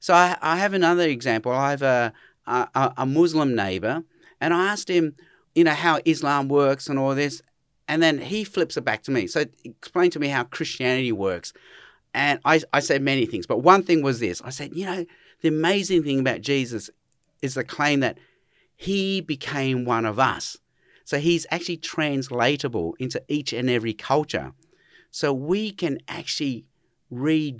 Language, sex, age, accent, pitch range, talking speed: English, male, 40-59, Australian, 125-165 Hz, 180 wpm